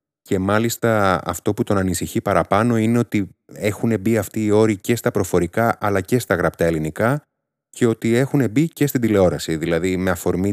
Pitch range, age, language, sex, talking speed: 90-125 Hz, 30-49, Greek, male, 180 wpm